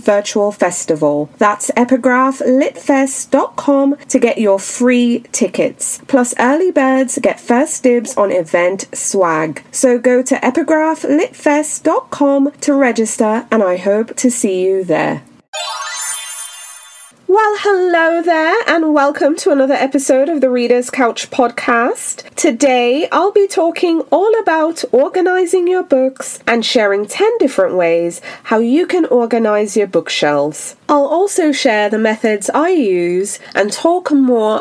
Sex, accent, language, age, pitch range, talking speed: female, British, English, 30-49, 190-280 Hz, 130 wpm